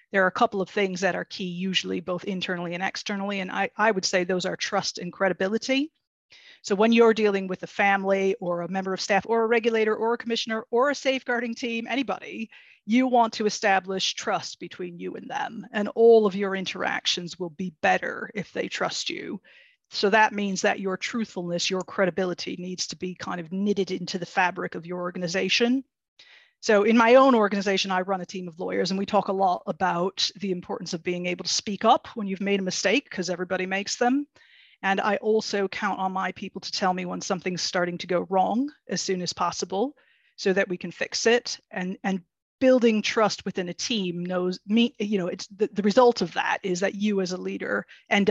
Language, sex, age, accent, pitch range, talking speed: English, female, 40-59, American, 185-220 Hz, 215 wpm